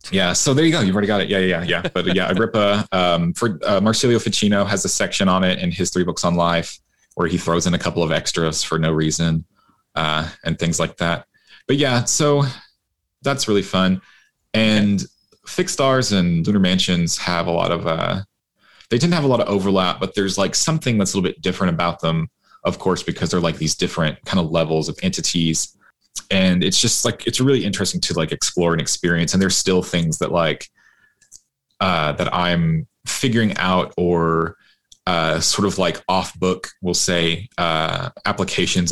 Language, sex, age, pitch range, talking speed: English, male, 30-49, 85-105 Hz, 195 wpm